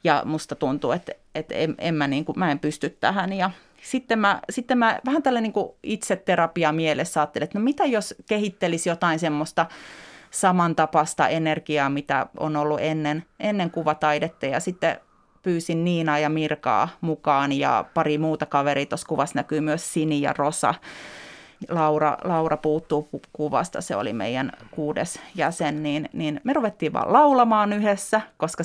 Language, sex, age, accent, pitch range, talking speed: Finnish, female, 30-49, native, 150-175 Hz, 155 wpm